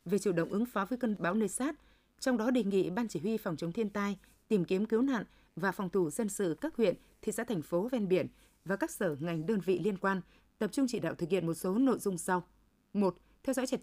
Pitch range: 180-230 Hz